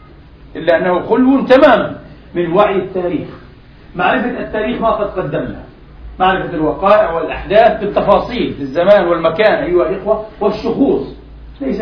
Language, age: Arabic, 50-69